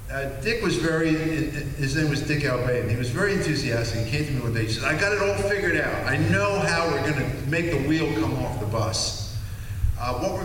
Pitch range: 115-150 Hz